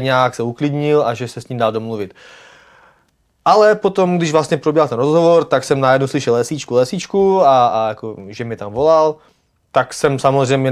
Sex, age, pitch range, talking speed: male, 20-39, 120-140 Hz, 185 wpm